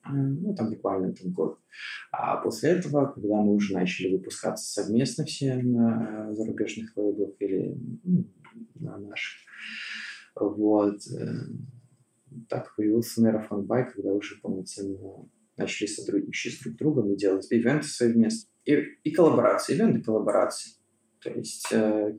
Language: Russian